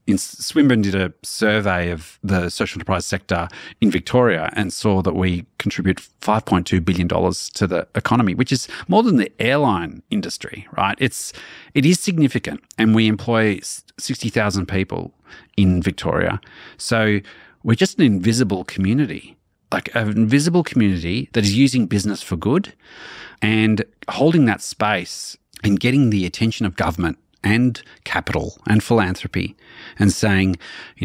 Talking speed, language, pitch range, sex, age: 140 wpm, English, 95-120 Hz, male, 40-59